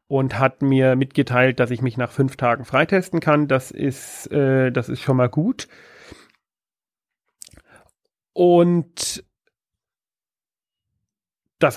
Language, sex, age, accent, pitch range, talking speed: German, male, 40-59, German, 130-155 Hz, 100 wpm